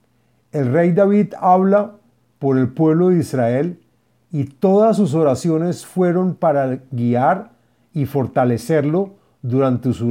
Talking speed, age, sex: 120 wpm, 50-69, male